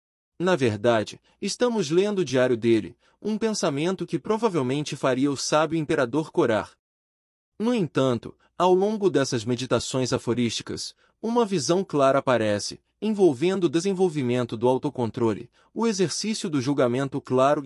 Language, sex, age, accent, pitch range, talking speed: Portuguese, male, 30-49, Brazilian, 120-180 Hz, 125 wpm